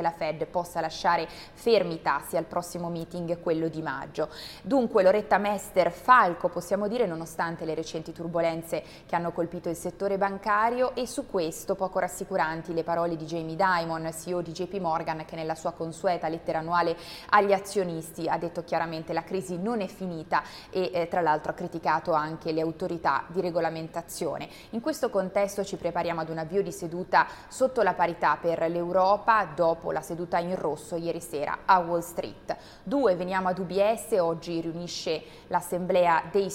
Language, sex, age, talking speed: Italian, female, 20-39, 170 wpm